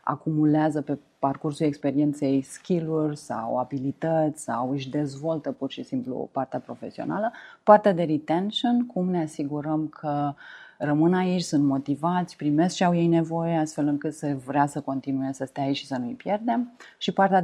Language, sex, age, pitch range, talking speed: Romanian, female, 30-49, 140-165 Hz, 160 wpm